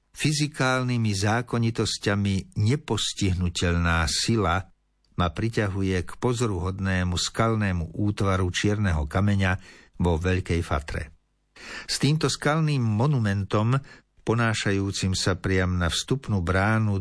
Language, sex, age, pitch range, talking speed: Slovak, male, 60-79, 95-120 Hz, 90 wpm